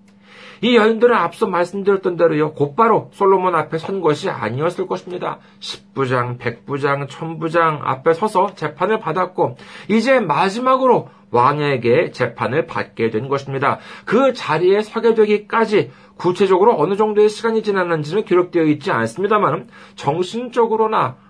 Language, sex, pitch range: Korean, male, 155-220 Hz